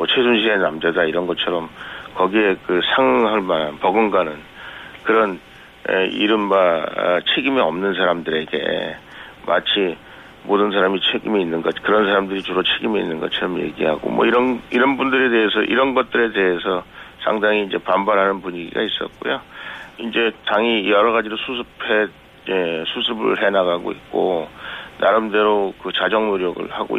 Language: Korean